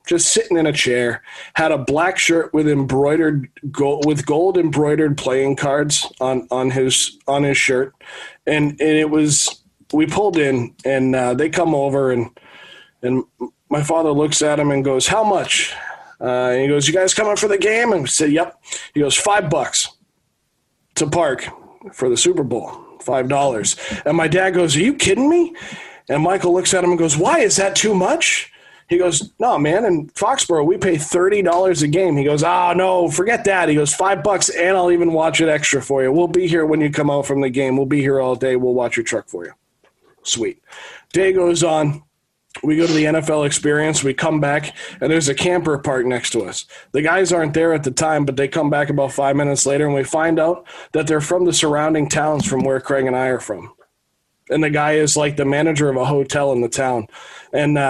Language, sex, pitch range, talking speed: English, male, 140-175 Hz, 220 wpm